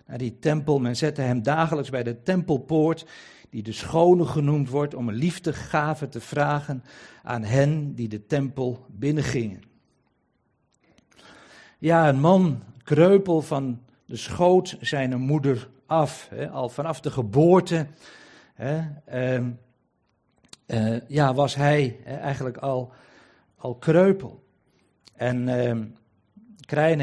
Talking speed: 125 wpm